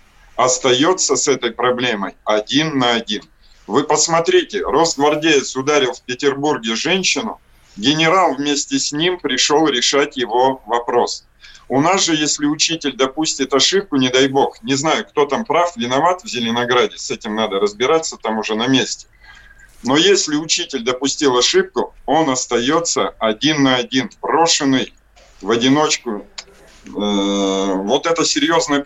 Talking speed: 135 wpm